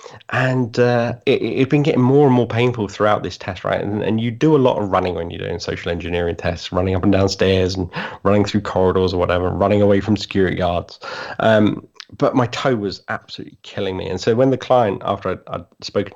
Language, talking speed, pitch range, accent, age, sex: English, 225 wpm, 95-130 Hz, British, 30-49, male